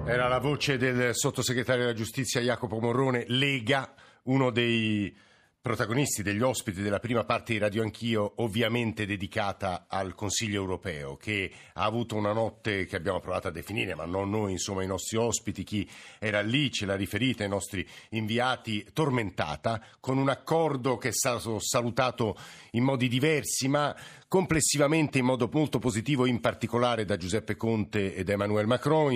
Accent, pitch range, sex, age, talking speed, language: native, 105-130 Hz, male, 50-69, 160 wpm, Italian